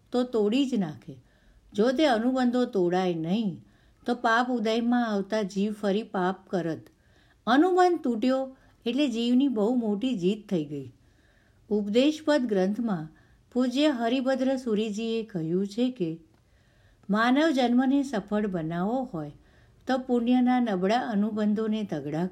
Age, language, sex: 60-79, Gujarati, female